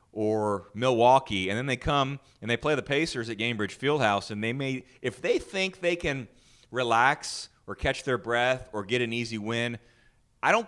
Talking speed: 190 wpm